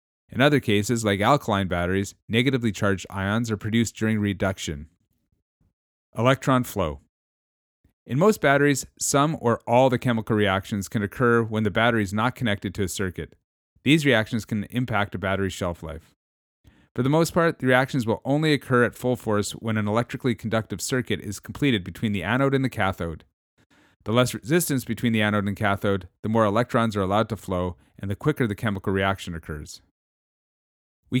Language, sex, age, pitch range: English, male, 30-49, 95-120 Hz